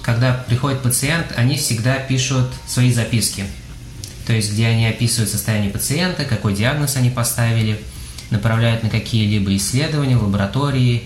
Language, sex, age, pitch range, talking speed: Russian, male, 20-39, 105-125 Hz, 135 wpm